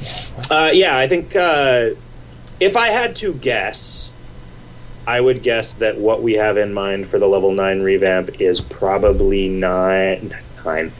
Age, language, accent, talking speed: 30-49, English, American, 155 wpm